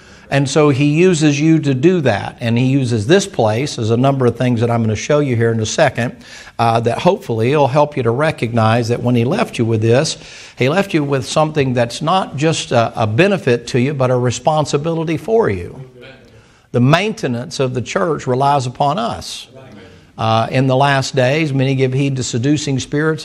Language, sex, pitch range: English, male, 120-150 Hz